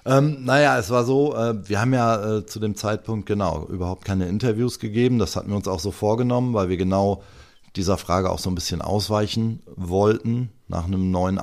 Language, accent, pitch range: German, German, 85-110 Hz